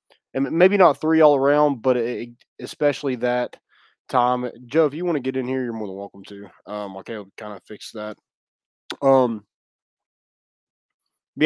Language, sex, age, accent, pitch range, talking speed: English, male, 20-39, American, 110-145 Hz, 180 wpm